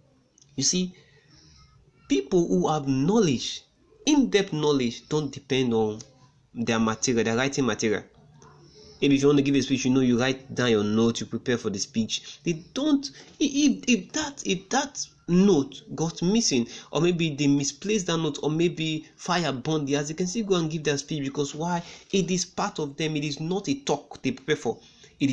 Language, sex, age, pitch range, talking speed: English, male, 30-49, 135-175 Hz, 195 wpm